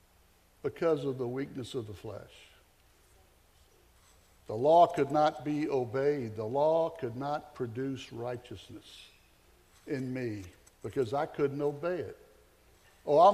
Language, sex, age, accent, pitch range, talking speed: English, male, 60-79, American, 120-160 Hz, 125 wpm